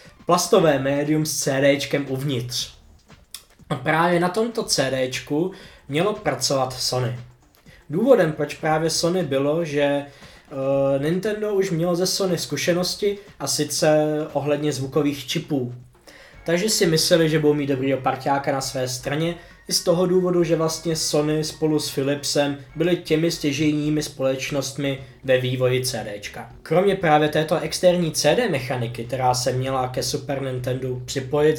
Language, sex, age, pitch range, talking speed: Czech, male, 20-39, 135-170 Hz, 135 wpm